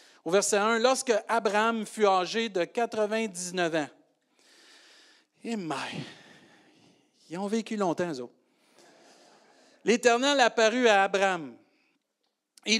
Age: 50-69